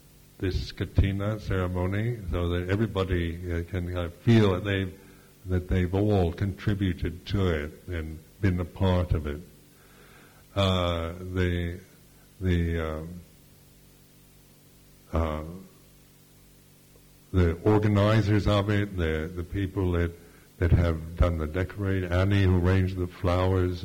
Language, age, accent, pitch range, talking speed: English, 60-79, American, 85-100 Hz, 120 wpm